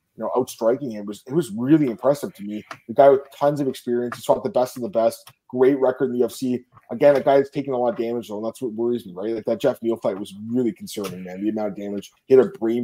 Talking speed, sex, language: 285 wpm, male, English